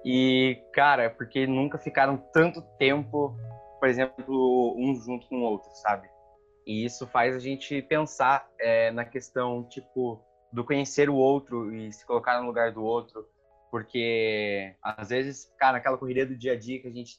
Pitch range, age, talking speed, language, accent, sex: 115-140 Hz, 20-39, 170 wpm, Portuguese, Brazilian, male